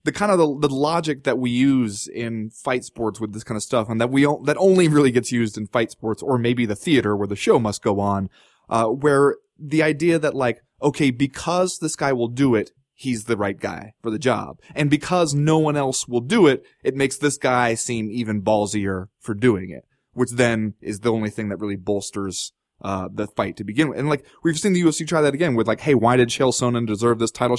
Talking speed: 240 wpm